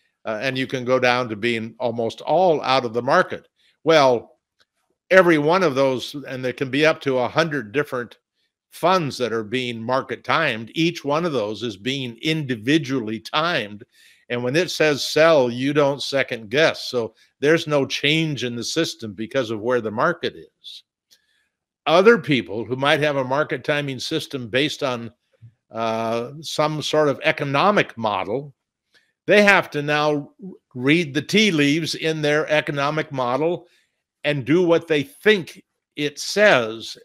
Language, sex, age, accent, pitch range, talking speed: English, male, 50-69, American, 125-160 Hz, 160 wpm